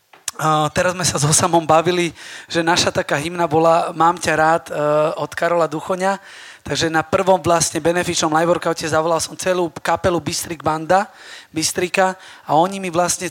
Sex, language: male, Slovak